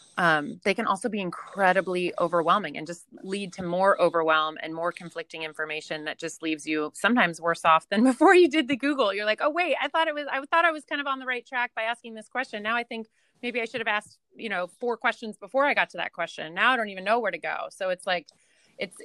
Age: 30-49